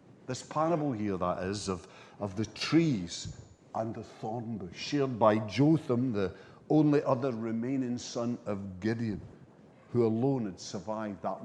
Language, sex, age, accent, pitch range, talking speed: English, male, 50-69, British, 110-170 Hz, 145 wpm